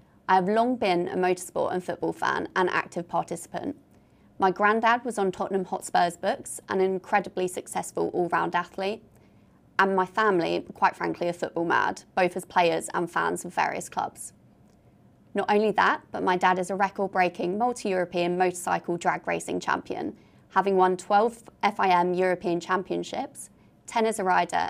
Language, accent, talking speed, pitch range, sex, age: English, British, 155 wpm, 175-205 Hz, female, 20-39